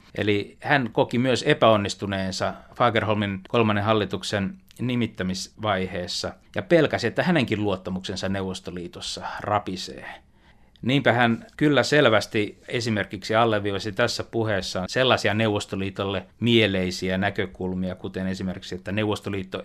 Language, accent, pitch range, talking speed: Finnish, native, 95-115 Hz, 100 wpm